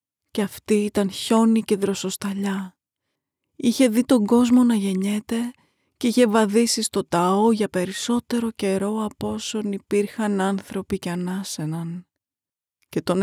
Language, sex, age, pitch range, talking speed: Greek, female, 20-39, 190-225 Hz, 125 wpm